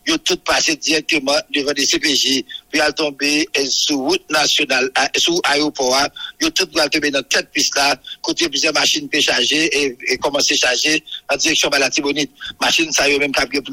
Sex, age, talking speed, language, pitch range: male, 60-79, 190 wpm, English, 150-205 Hz